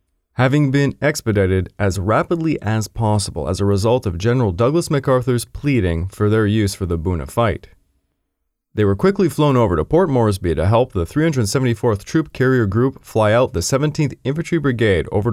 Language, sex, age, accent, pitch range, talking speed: English, male, 30-49, American, 95-130 Hz, 170 wpm